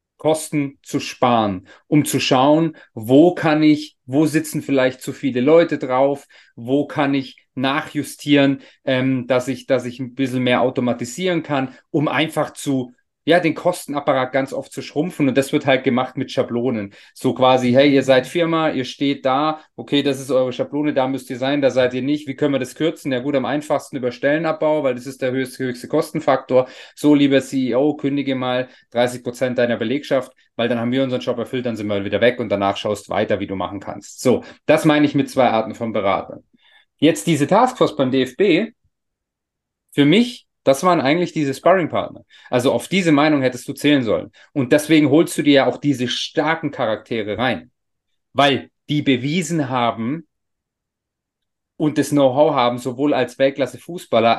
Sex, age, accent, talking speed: male, 30-49, German, 185 wpm